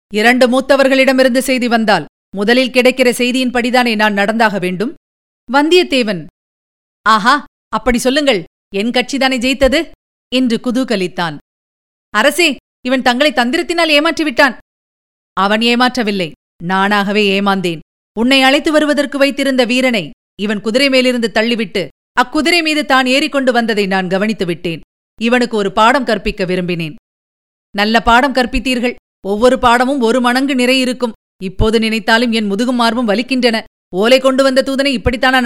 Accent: native